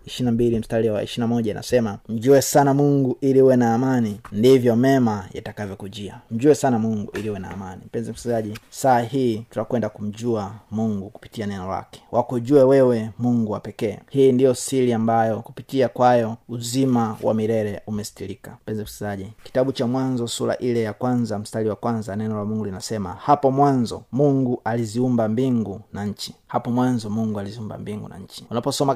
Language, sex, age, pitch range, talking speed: Swahili, male, 30-49, 110-130 Hz, 160 wpm